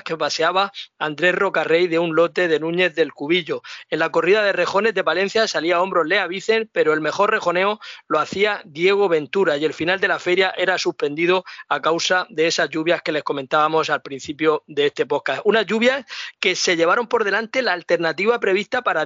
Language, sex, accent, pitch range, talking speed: Spanish, male, Spanish, 165-210 Hz, 200 wpm